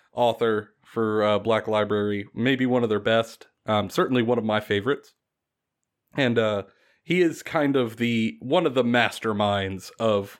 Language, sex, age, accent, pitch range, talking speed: English, male, 30-49, American, 105-130 Hz, 155 wpm